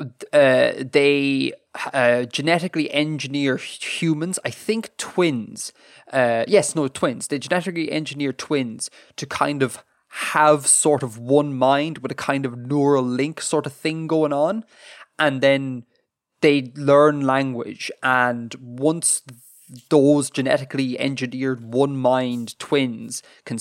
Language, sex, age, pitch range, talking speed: English, male, 20-39, 130-155 Hz, 125 wpm